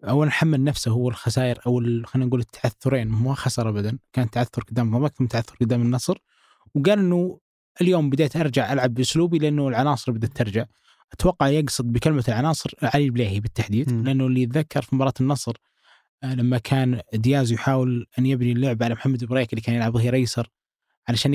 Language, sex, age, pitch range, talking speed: Arabic, male, 20-39, 120-145 Hz, 170 wpm